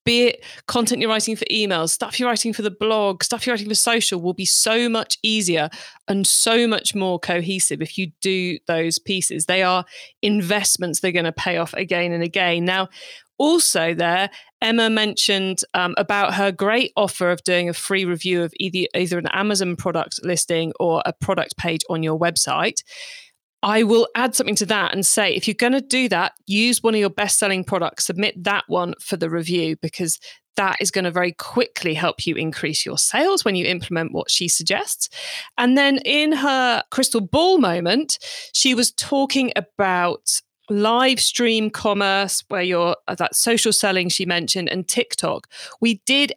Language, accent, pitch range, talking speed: English, British, 175-230 Hz, 185 wpm